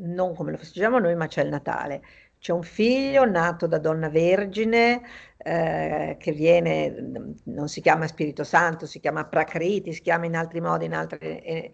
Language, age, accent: Italian, 50-69, native